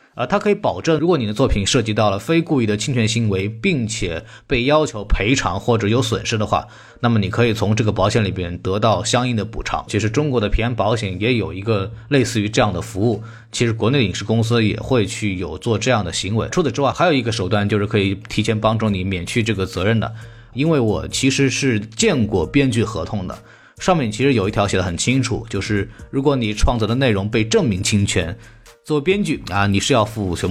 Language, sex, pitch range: Chinese, male, 105-130 Hz